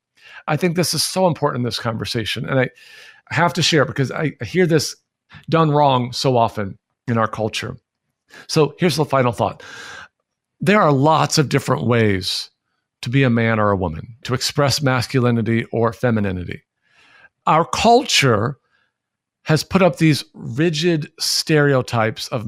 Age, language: 50-69, English